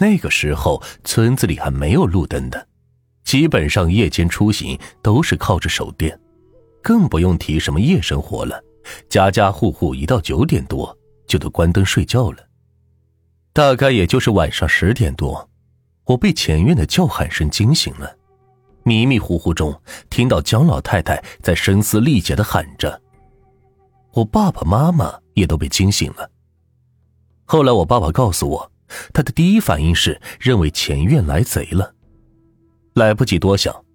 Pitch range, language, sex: 90-120 Hz, Chinese, male